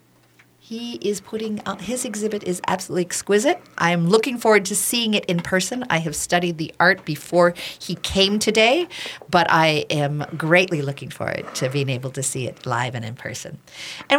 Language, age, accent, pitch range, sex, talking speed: English, 50-69, American, 150-210 Hz, female, 185 wpm